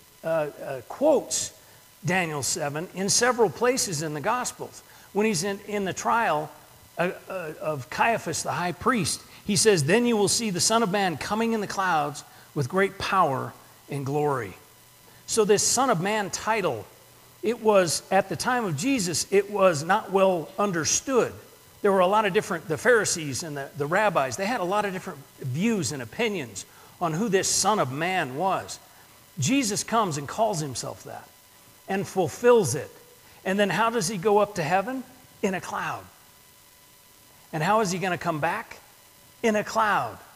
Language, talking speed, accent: English, 175 wpm, American